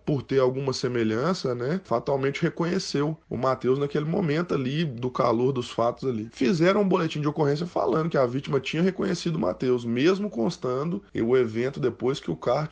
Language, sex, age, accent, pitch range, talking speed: Portuguese, male, 20-39, Brazilian, 120-150 Hz, 180 wpm